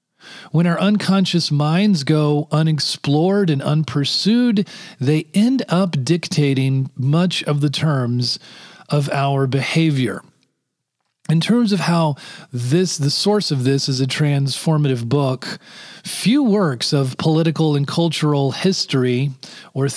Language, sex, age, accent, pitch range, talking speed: English, male, 40-59, American, 140-185 Hz, 120 wpm